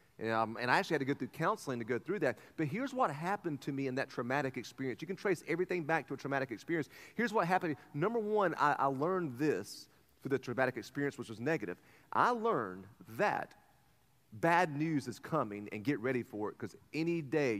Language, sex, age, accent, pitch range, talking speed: English, male, 30-49, American, 120-160 Hz, 215 wpm